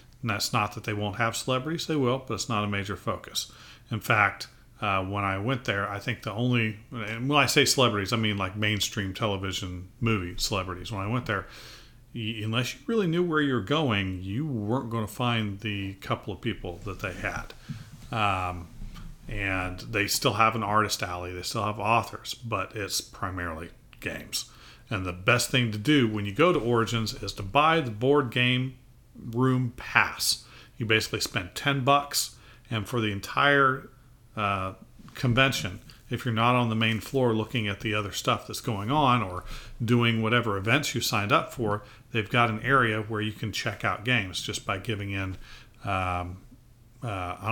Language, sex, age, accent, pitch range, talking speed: English, male, 40-59, American, 100-125 Hz, 185 wpm